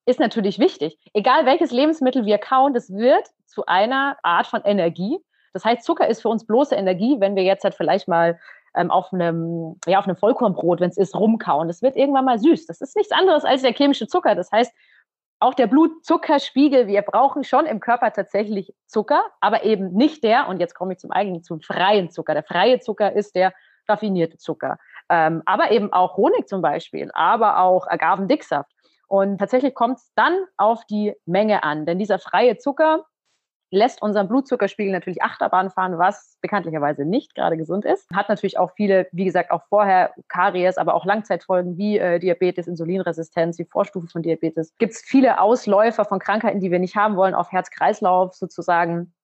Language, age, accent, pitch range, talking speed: German, 30-49, German, 180-250 Hz, 185 wpm